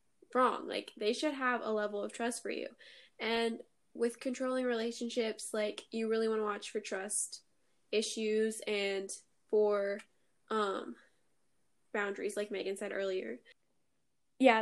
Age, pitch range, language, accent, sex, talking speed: 10-29, 215-260 Hz, English, American, female, 135 wpm